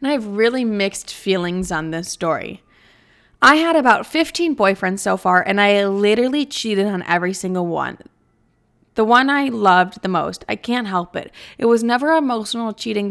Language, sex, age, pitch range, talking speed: English, female, 20-39, 190-275 Hz, 180 wpm